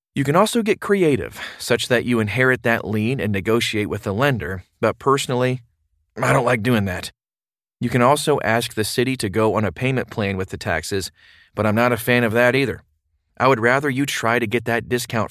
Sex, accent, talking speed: male, American, 215 wpm